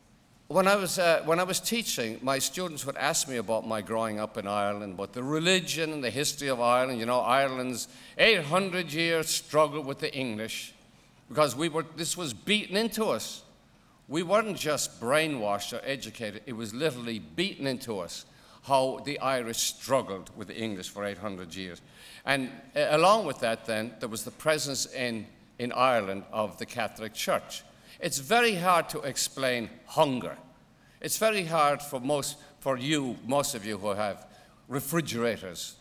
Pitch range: 110-155 Hz